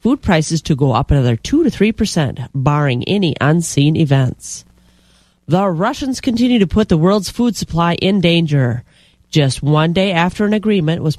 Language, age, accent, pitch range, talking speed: English, 40-59, American, 145-195 Hz, 165 wpm